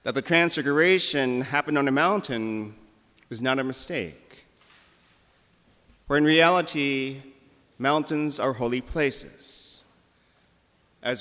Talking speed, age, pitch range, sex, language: 100 wpm, 40-59, 120-155 Hz, male, English